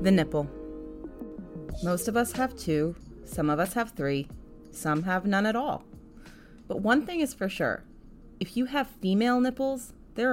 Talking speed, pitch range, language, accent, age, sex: 170 wpm, 155-220 Hz, English, American, 30-49, female